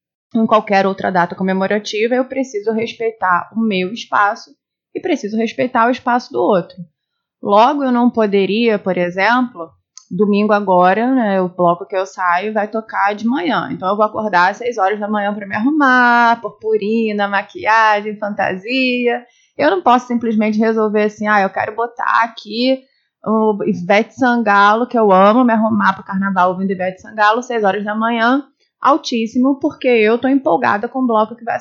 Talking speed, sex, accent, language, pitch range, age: 170 wpm, female, Brazilian, Portuguese, 195-235 Hz, 20-39